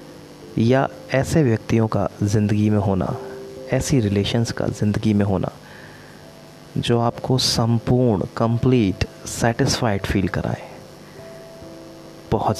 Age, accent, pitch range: 30-49, native, 95-125 Hz